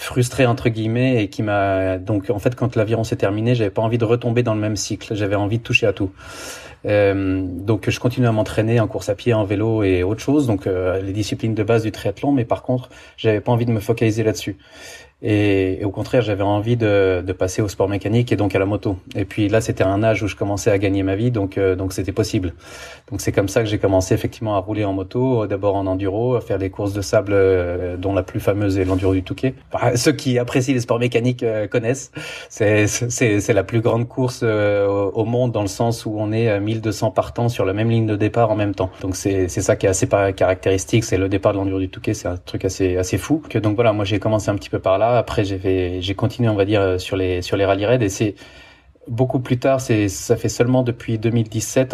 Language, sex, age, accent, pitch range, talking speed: French, male, 30-49, French, 100-120 Hz, 255 wpm